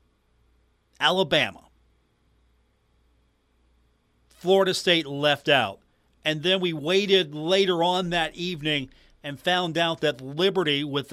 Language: English